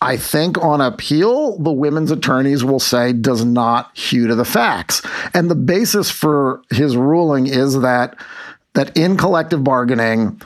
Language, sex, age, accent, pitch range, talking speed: English, male, 50-69, American, 135-175 Hz, 155 wpm